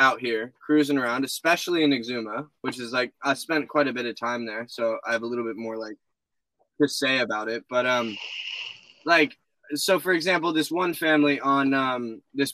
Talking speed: 200 wpm